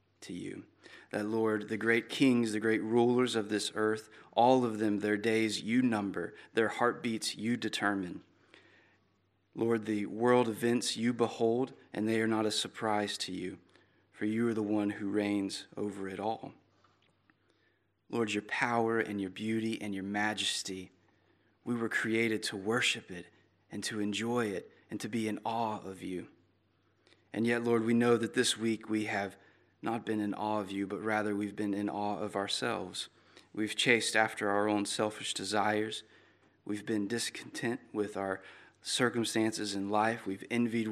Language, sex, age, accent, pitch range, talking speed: English, male, 30-49, American, 105-115 Hz, 170 wpm